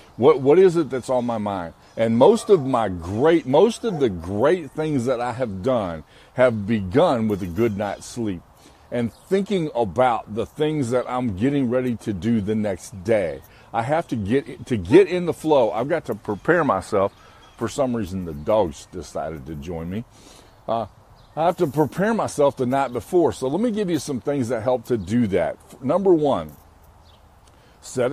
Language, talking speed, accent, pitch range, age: English, 190 wpm, American, 85-130 Hz, 50-69